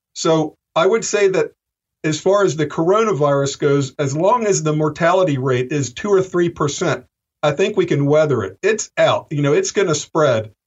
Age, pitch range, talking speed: 50-69, 145-190 Hz, 200 wpm